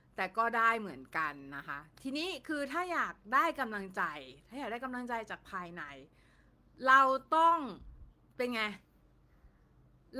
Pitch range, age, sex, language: 205-280 Hz, 30-49, female, Thai